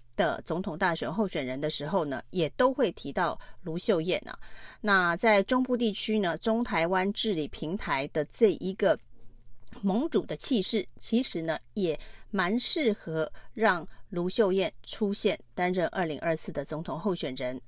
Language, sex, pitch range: Chinese, female, 165-225 Hz